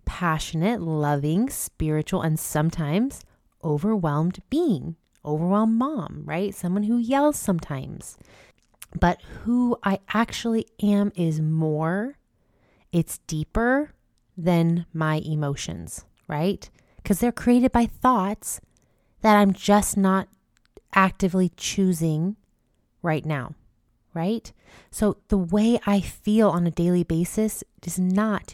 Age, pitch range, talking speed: 20-39, 160-215 Hz, 110 wpm